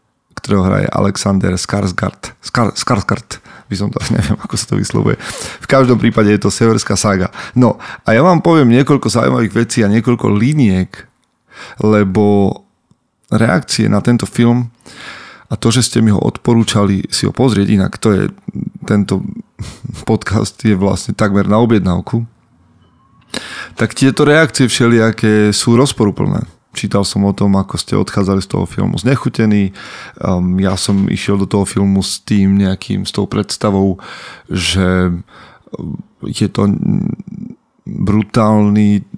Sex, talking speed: male, 140 wpm